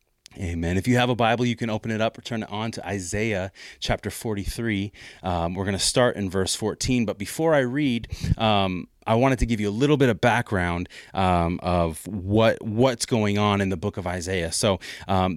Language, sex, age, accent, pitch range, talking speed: English, male, 30-49, American, 95-120 Hz, 210 wpm